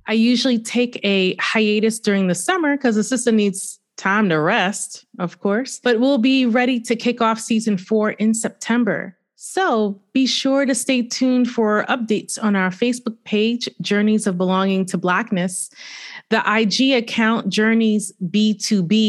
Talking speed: 155 wpm